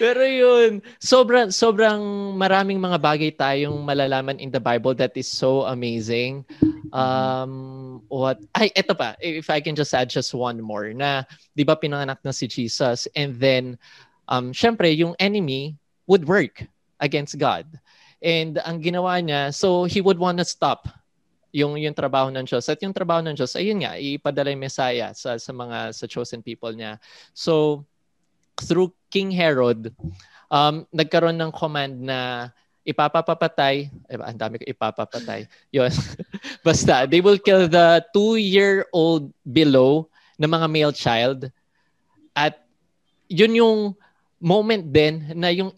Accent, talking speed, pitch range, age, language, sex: Filipino, 140 wpm, 130-170 Hz, 20-39, English, male